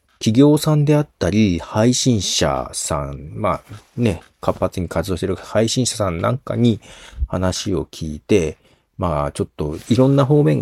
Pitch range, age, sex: 80-115 Hz, 40-59, male